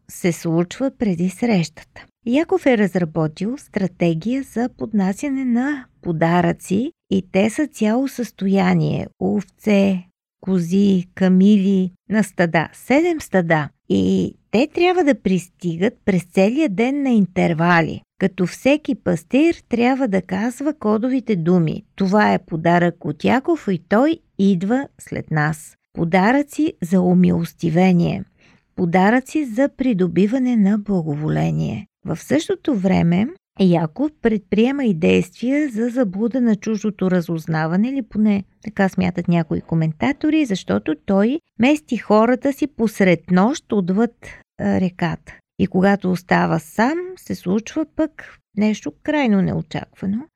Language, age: Bulgarian, 50-69